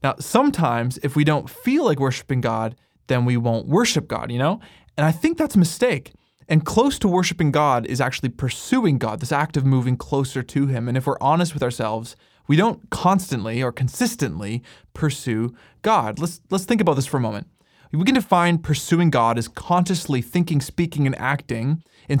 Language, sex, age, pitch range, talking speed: English, male, 20-39, 130-170 Hz, 190 wpm